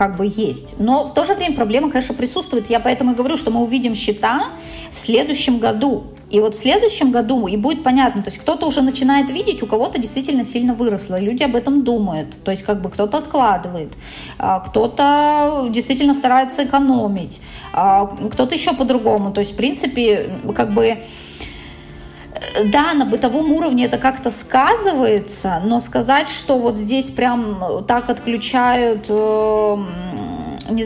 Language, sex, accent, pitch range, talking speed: Russian, female, native, 210-260 Hz, 155 wpm